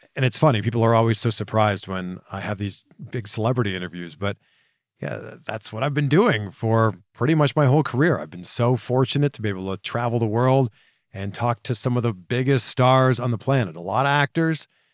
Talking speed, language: 215 wpm, English